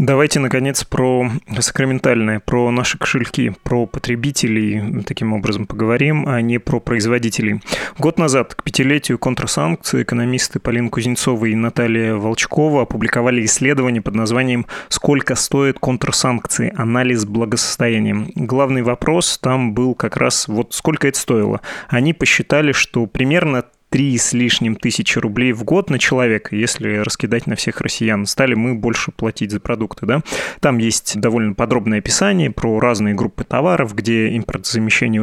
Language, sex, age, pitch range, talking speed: Russian, male, 20-39, 115-140 Hz, 140 wpm